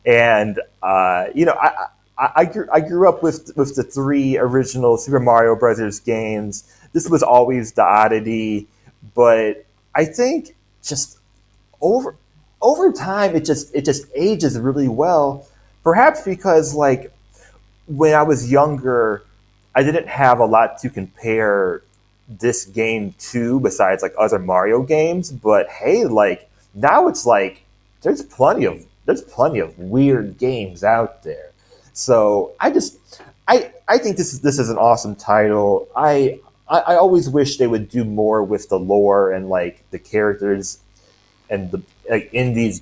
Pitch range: 105-140 Hz